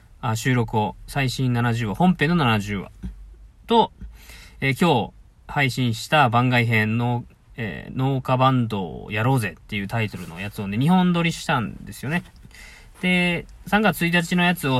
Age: 20-39